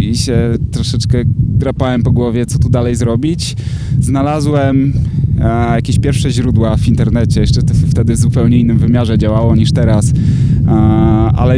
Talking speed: 135 wpm